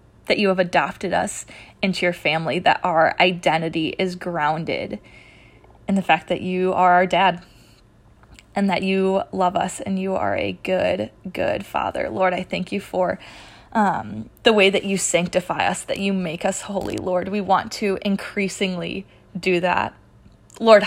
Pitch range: 180-200 Hz